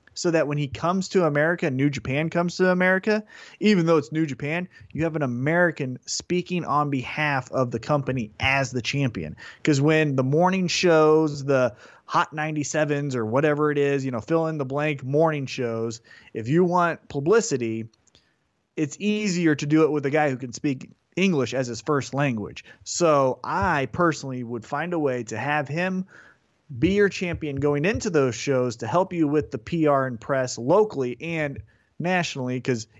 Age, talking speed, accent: 30-49, 180 wpm, American